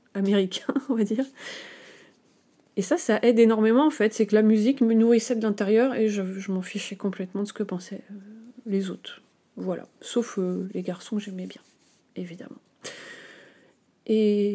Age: 30-49